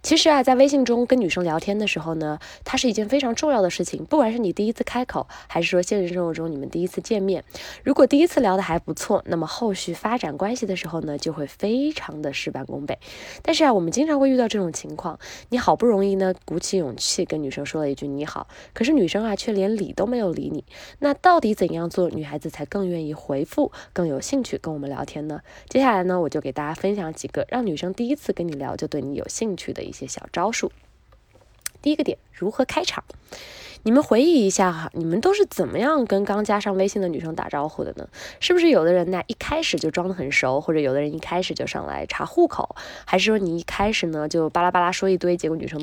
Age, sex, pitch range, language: 20-39, female, 165-250 Hz, Chinese